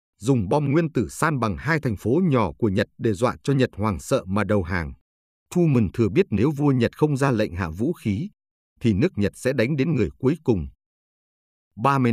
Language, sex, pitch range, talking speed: Vietnamese, male, 95-140 Hz, 215 wpm